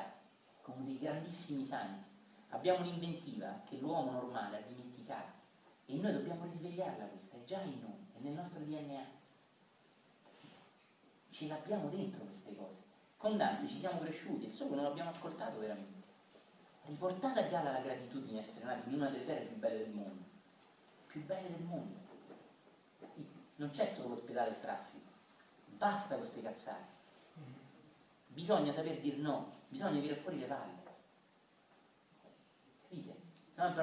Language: Italian